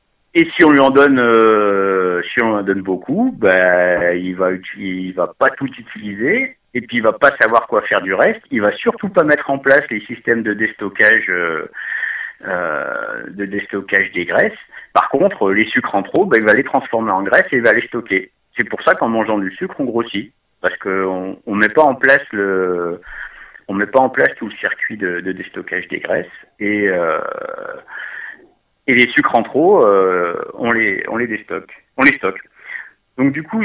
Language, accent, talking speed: French, French, 205 wpm